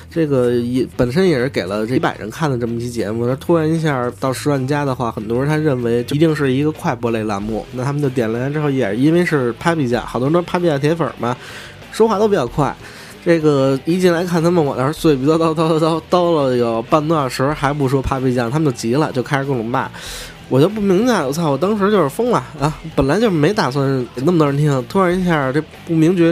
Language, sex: Chinese, male